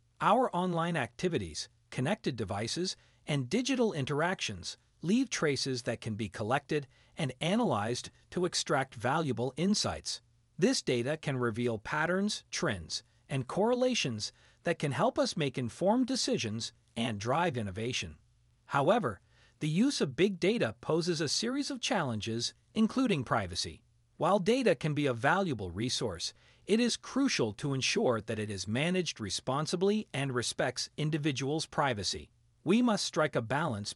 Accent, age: American, 40-59